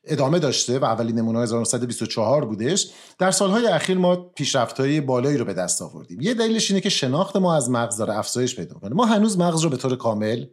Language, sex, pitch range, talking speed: Persian, male, 125-160 Hz, 200 wpm